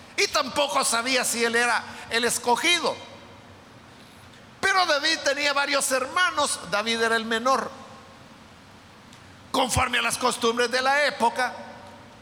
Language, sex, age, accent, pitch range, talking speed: Spanish, male, 50-69, Mexican, 230-290 Hz, 120 wpm